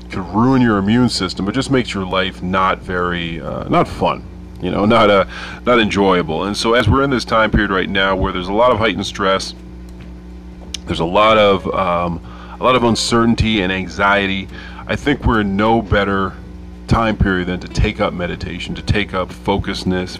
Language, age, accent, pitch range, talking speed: English, 30-49, American, 90-110 Hz, 195 wpm